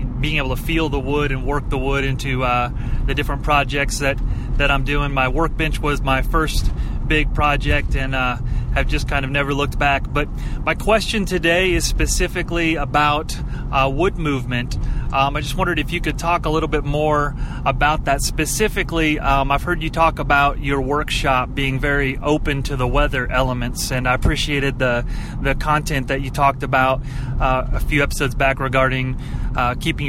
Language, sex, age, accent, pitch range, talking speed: English, male, 30-49, American, 130-150 Hz, 185 wpm